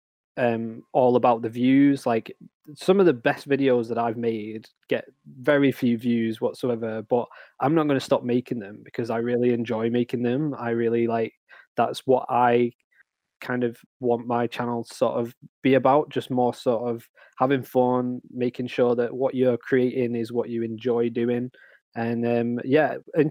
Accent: British